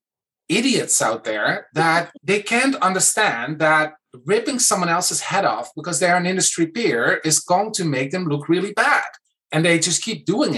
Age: 30-49